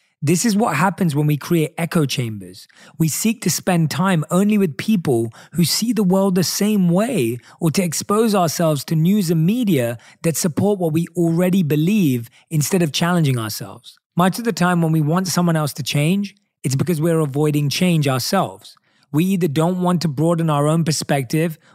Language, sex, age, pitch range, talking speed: English, male, 30-49, 145-180 Hz, 190 wpm